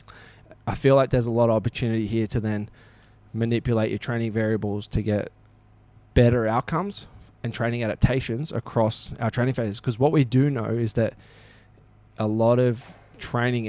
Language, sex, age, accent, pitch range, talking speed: English, male, 20-39, Australian, 105-120 Hz, 160 wpm